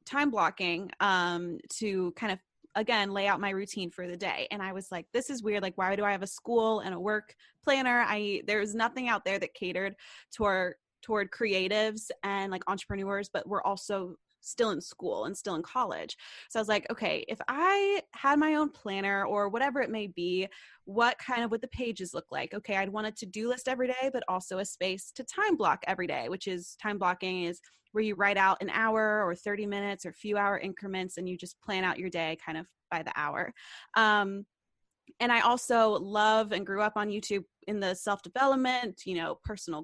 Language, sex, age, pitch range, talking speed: English, female, 20-39, 190-225 Hz, 215 wpm